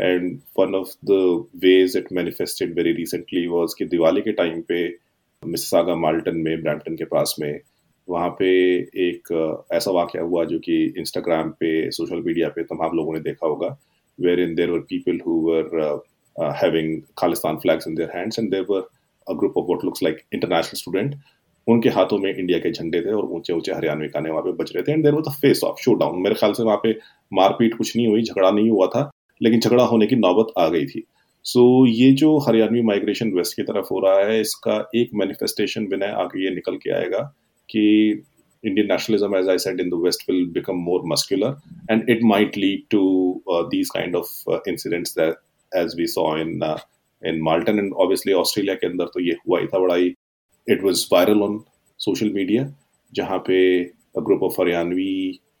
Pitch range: 90-130 Hz